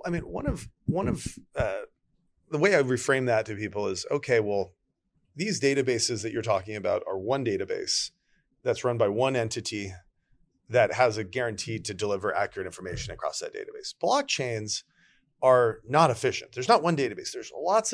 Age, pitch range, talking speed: 40-59, 115-155 Hz, 175 wpm